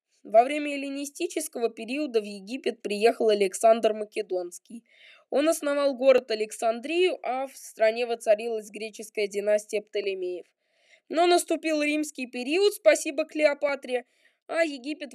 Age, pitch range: 20-39, 235-320 Hz